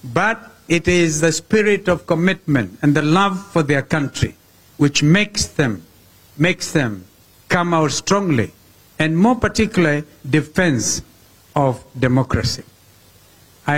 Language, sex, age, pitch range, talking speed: English, male, 60-79, 125-190 Hz, 120 wpm